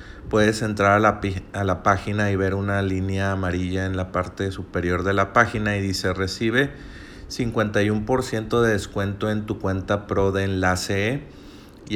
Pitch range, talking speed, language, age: 90-100 Hz, 165 wpm, Spanish, 30-49